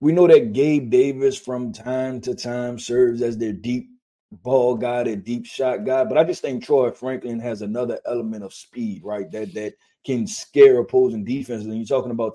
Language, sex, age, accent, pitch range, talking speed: English, male, 20-39, American, 120-170 Hz, 200 wpm